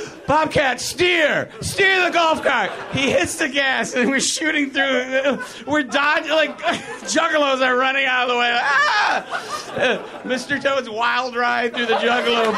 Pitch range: 200-305 Hz